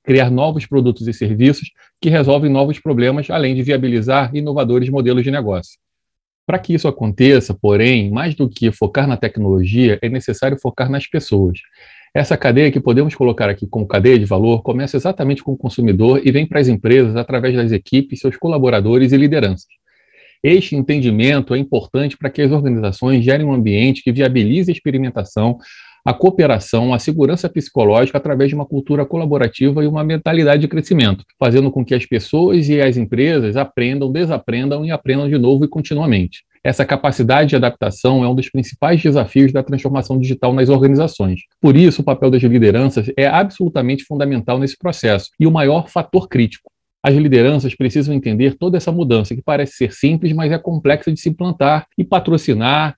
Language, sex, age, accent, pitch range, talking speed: Portuguese, male, 40-59, Brazilian, 120-150 Hz, 175 wpm